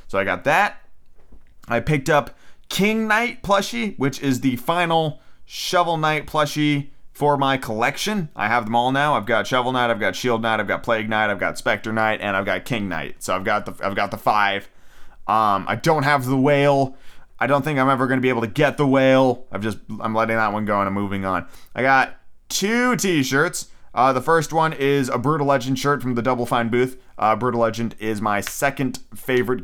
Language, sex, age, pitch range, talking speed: English, male, 30-49, 110-140 Hz, 220 wpm